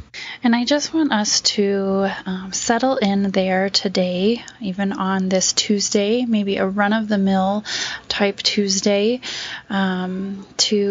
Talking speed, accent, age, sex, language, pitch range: 120 wpm, American, 10-29, female, English, 190-220 Hz